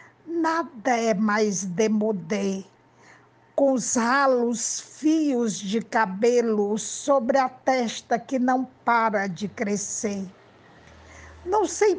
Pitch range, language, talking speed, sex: 220-280 Hz, Portuguese, 100 wpm, female